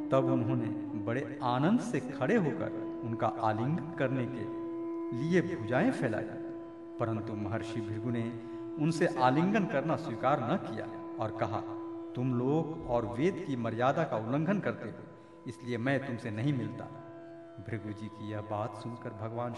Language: Hindi